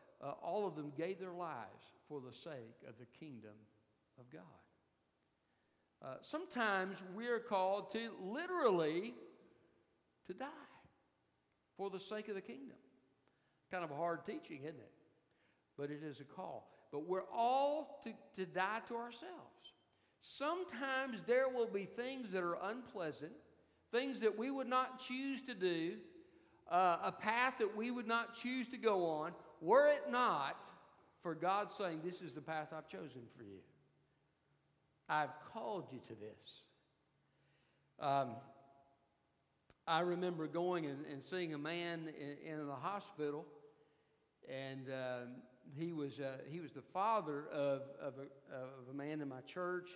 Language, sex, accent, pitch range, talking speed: English, male, American, 145-220 Hz, 155 wpm